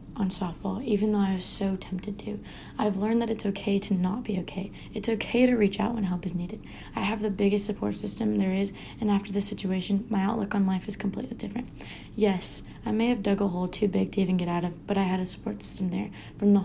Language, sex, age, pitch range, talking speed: English, female, 20-39, 190-220 Hz, 250 wpm